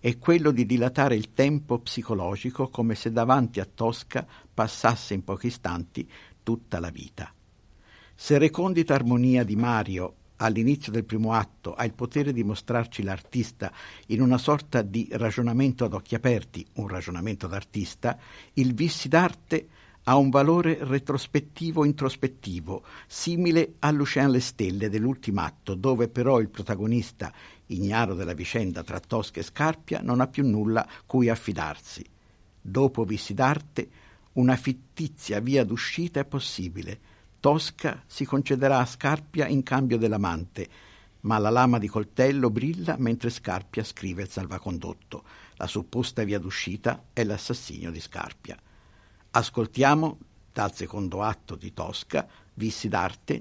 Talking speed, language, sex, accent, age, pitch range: 135 wpm, Italian, male, native, 50-69, 100-135 Hz